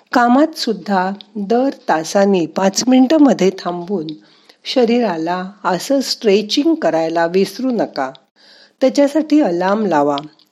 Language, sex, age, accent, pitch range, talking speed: Marathi, female, 50-69, native, 175-245 Hz, 95 wpm